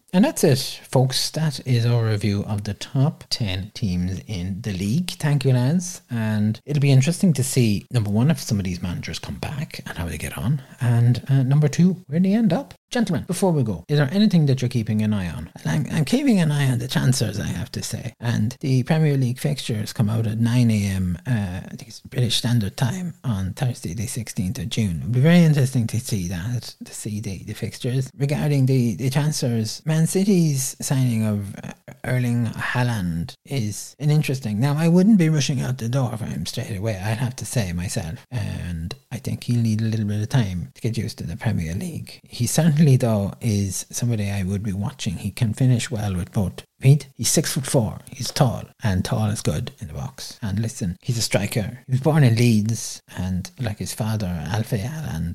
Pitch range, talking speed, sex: 105-145 Hz, 215 wpm, male